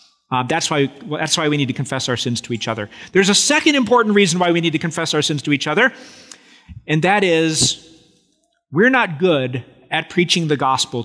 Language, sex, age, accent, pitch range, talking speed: English, male, 40-59, American, 135-215 Hz, 215 wpm